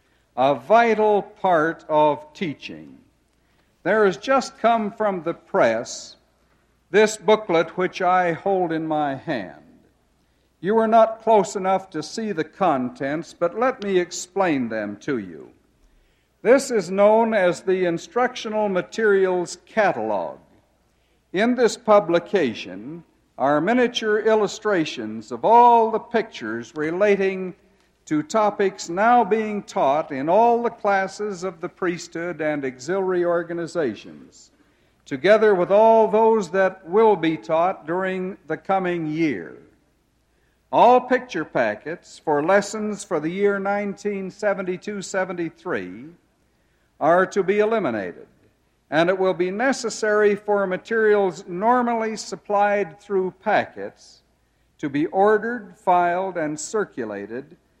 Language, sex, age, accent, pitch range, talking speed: English, male, 60-79, American, 175-215 Hz, 115 wpm